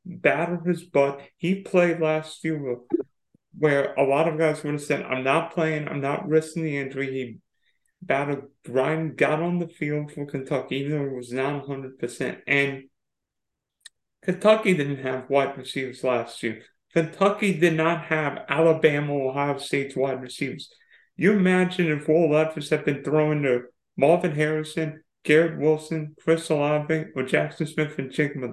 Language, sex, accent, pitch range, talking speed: English, male, American, 140-165 Hz, 160 wpm